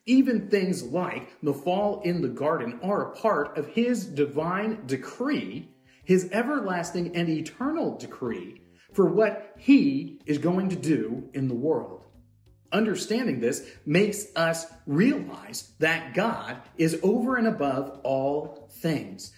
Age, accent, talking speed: 40-59, American, 135 wpm